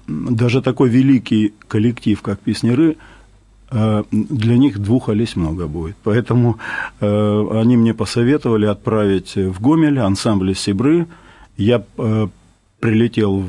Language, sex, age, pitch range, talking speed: Russian, male, 50-69, 100-125 Hz, 100 wpm